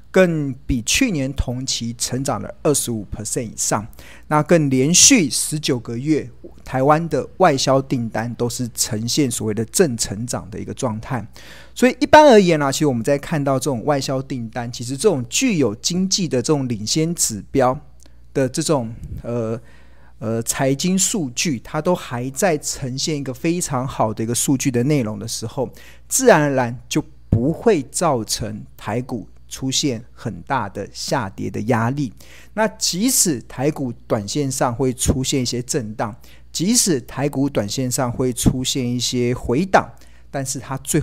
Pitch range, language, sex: 115-150 Hz, Chinese, male